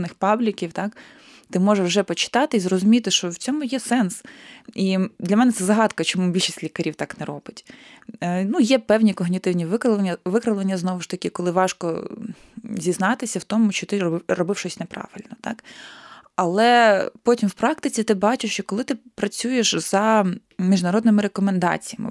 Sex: female